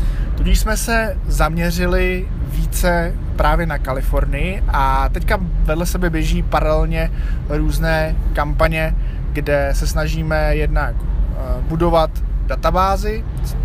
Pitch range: 130-160 Hz